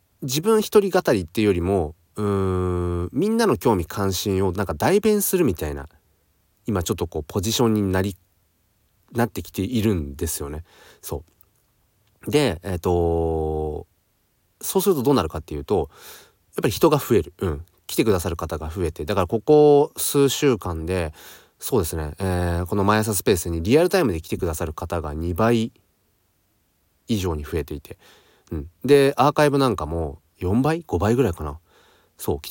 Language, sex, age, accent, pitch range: Japanese, male, 30-49, native, 85-120 Hz